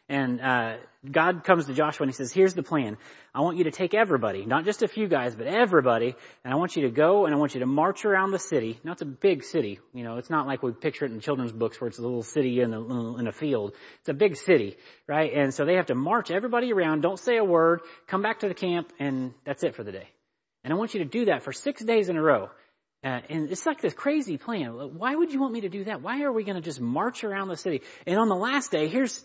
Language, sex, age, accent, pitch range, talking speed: English, male, 30-49, American, 140-210 Hz, 285 wpm